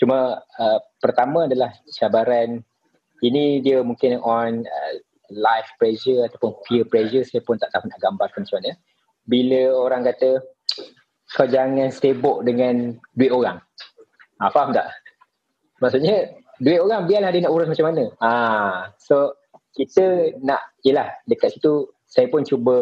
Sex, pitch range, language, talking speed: male, 115-160 Hz, Malay, 140 wpm